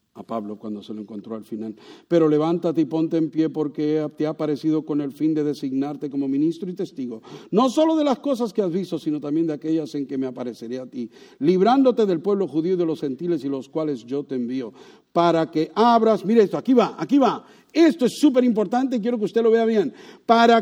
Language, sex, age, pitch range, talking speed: English, male, 50-69, 155-245 Hz, 235 wpm